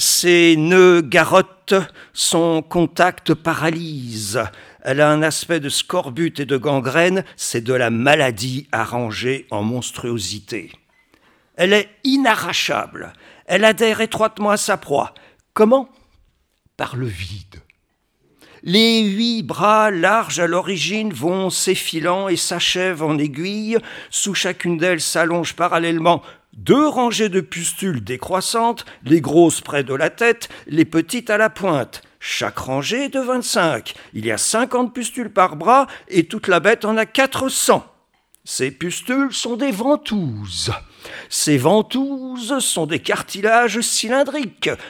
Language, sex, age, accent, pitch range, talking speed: French, male, 50-69, French, 140-215 Hz, 135 wpm